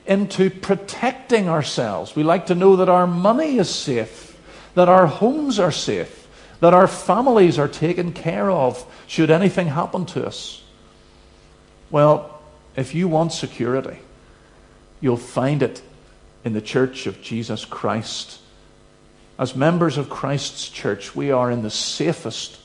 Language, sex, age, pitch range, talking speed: English, male, 50-69, 110-150 Hz, 140 wpm